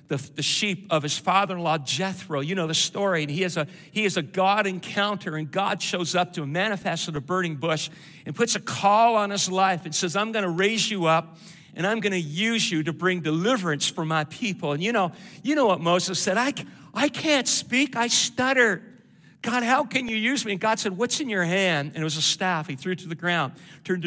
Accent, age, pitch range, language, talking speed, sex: American, 50-69, 155-200 Hz, English, 230 wpm, male